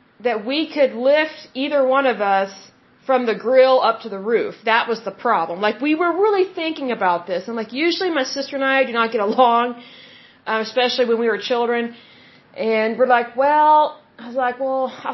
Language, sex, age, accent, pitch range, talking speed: Hindi, female, 30-49, American, 230-280 Hz, 205 wpm